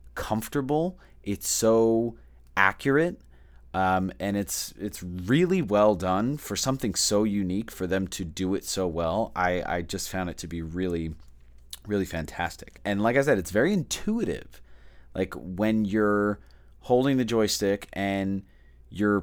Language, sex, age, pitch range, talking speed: English, male, 30-49, 85-110 Hz, 145 wpm